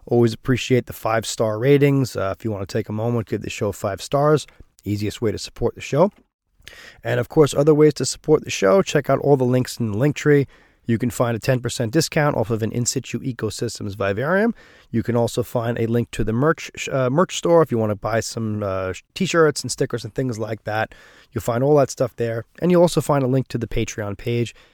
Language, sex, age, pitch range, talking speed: English, male, 20-39, 115-150 Hz, 240 wpm